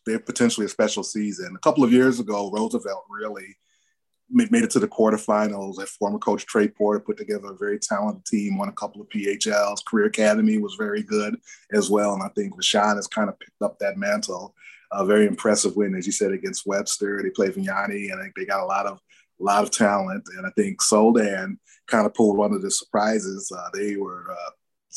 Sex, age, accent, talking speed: male, 30-49, American, 210 wpm